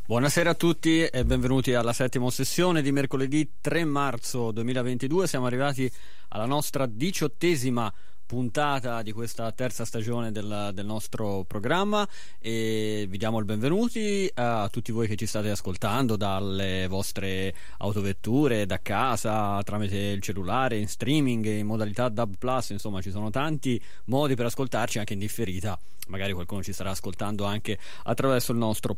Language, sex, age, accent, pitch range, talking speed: Italian, male, 30-49, native, 105-130 Hz, 145 wpm